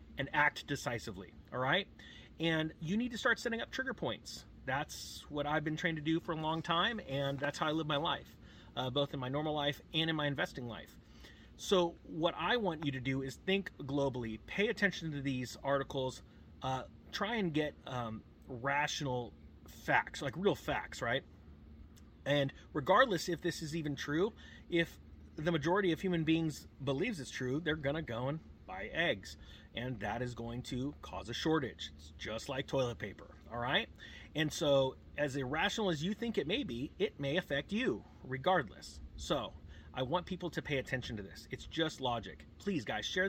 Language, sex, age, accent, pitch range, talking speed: English, male, 30-49, American, 120-160 Hz, 190 wpm